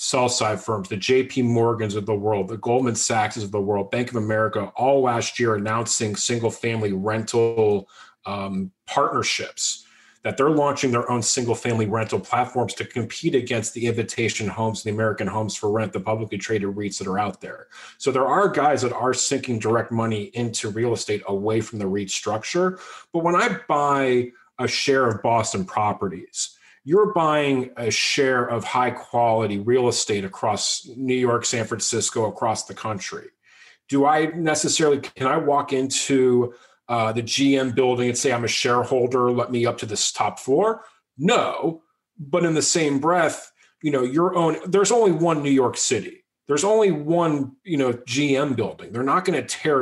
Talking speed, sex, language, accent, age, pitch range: 180 wpm, male, English, American, 30-49, 110-145 Hz